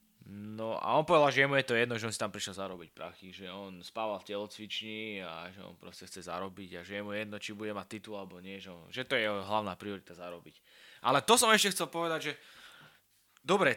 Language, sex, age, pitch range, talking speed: Slovak, male, 20-39, 105-130 Hz, 235 wpm